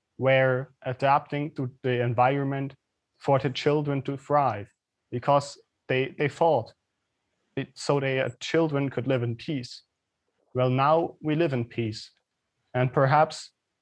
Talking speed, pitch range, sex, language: 125 wpm, 120-140 Hz, male, English